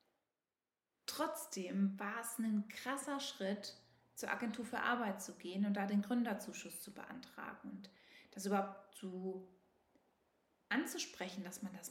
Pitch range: 195-230 Hz